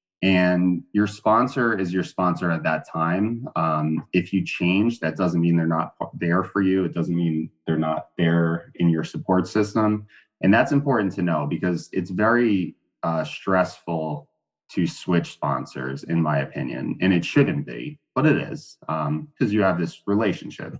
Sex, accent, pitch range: male, American, 85-100 Hz